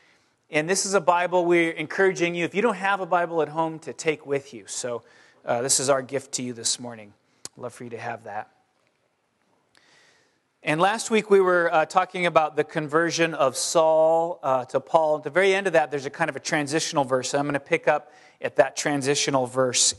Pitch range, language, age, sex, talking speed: 135-170 Hz, English, 30-49, male, 220 wpm